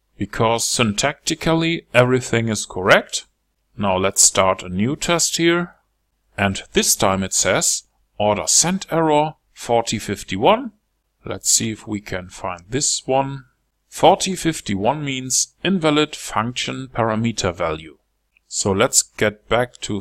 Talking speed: 120 wpm